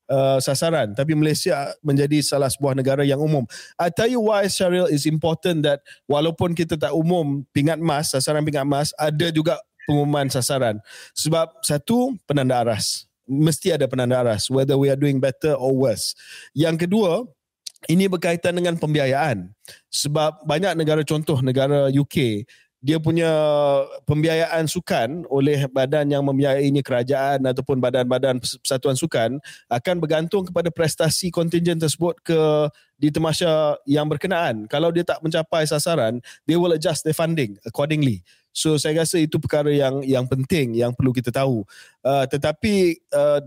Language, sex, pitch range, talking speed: Malay, male, 130-160 Hz, 145 wpm